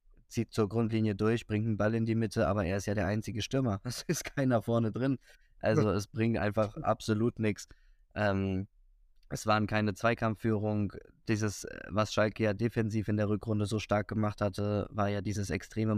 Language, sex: German, male